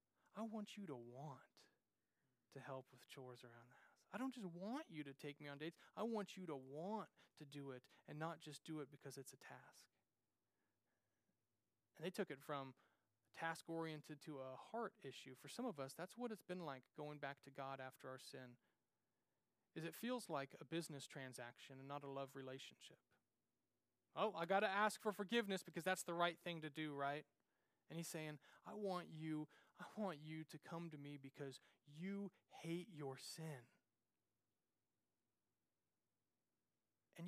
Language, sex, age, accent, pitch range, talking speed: English, male, 30-49, American, 140-180 Hz, 180 wpm